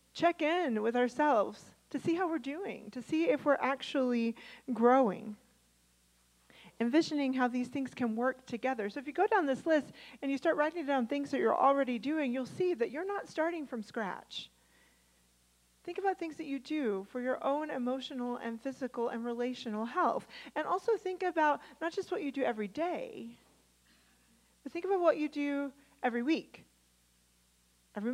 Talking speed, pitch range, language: 175 wpm, 230-300 Hz, English